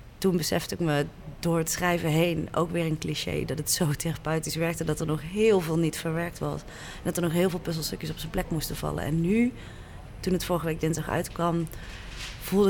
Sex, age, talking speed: female, 30-49, 215 wpm